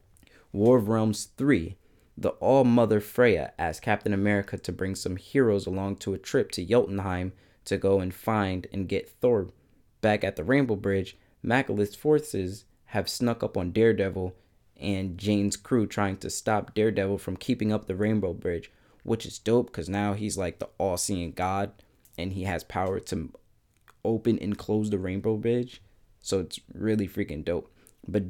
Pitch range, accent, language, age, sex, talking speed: 95-110 Hz, American, English, 20-39, male, 165 wpm